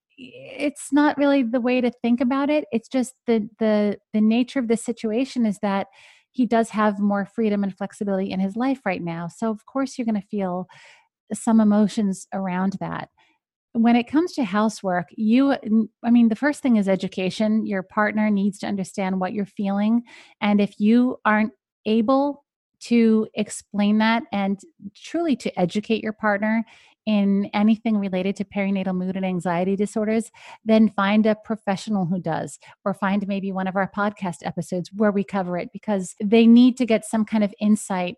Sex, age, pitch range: female, 30-49, 195-230 Hz